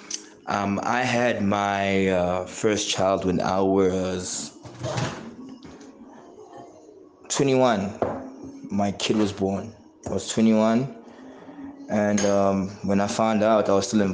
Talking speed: 120 wpm